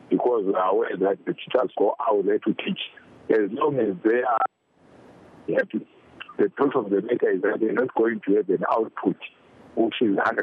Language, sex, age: English, male, 50-69